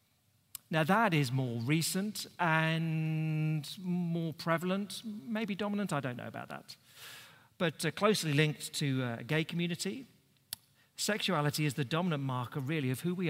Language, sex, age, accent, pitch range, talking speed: English, male, 40-59, British, 130-170 Hz, 145 wpm